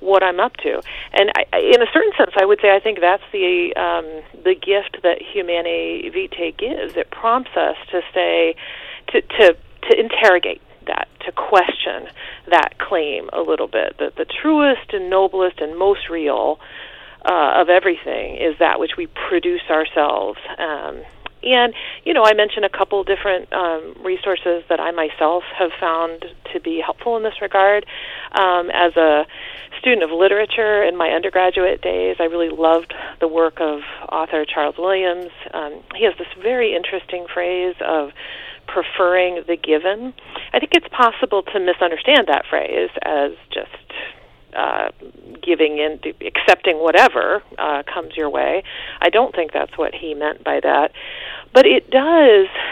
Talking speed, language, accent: 160 wpm, English, American